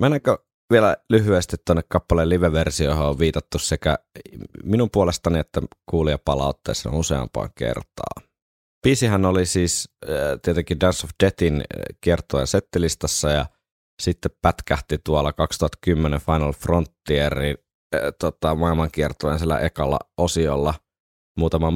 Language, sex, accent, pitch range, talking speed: Finnish, male, native, 70-85 Hz, 110 wpm